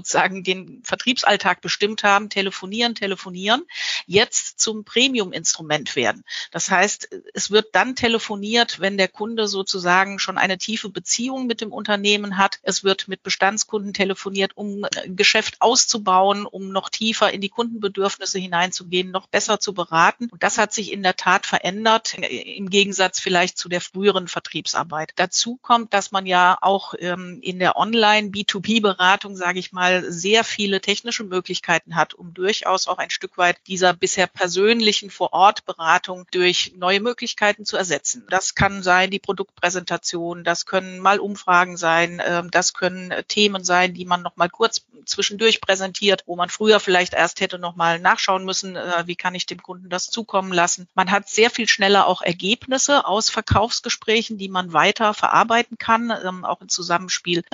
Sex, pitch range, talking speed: female, 180-210 Hz, 155 wpm